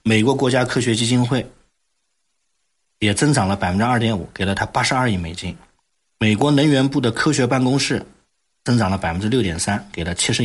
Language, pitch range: Chinese, 100-140 Hz